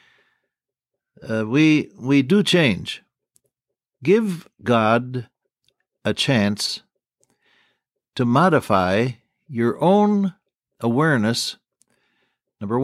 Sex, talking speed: male, 70 wpm